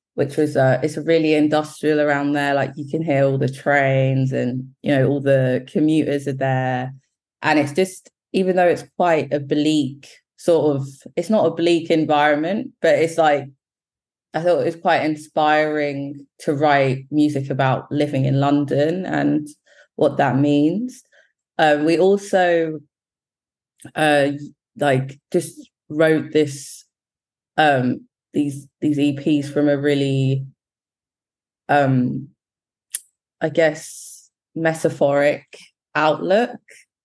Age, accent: 20-39, British